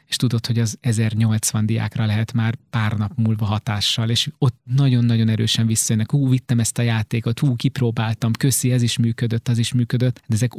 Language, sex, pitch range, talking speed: Hungarian, male, 115-130 Hz, 185 wpm